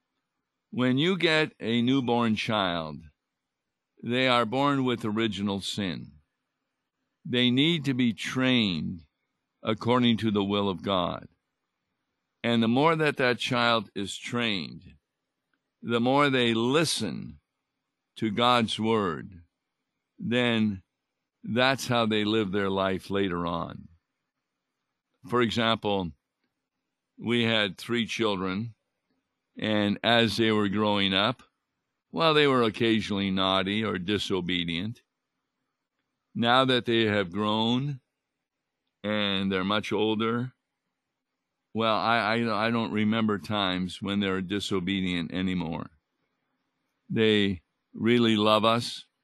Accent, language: American, English